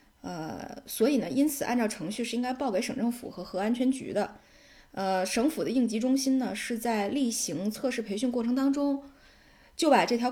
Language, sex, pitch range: Chinese, female, 195-240 Hz